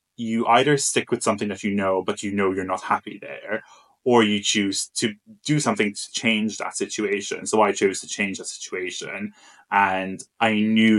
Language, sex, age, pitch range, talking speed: English, male, 20-39, 95-115 Hz, 190 wpm